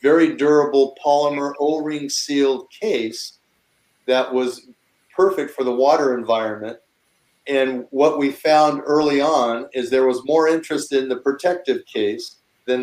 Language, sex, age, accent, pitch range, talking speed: English, male, 40-59, American, 120-140 Hz, 135 wpm